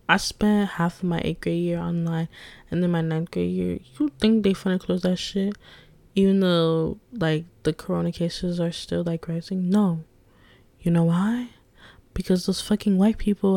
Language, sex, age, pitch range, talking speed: English, female, 10-29, 160-205 Hz, 180 wpm